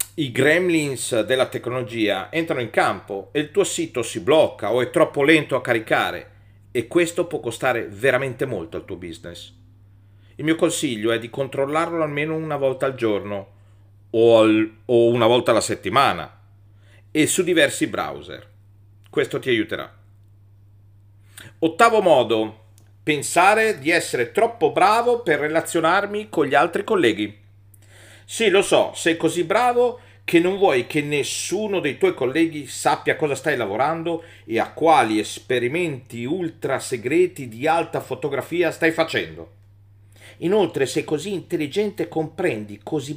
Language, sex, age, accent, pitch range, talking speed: Italian, male, 40-59, native, 105-165 Hz, 140 wpm